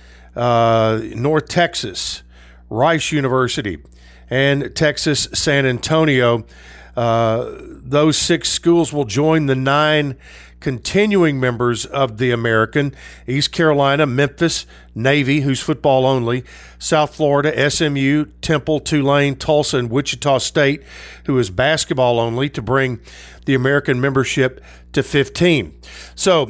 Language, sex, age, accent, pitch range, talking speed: English, male, 50-69, American, 115-155 Hz, 115 wpm